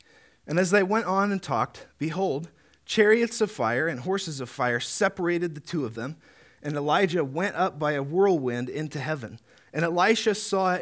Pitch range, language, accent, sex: 140-185 Hz, English, American, male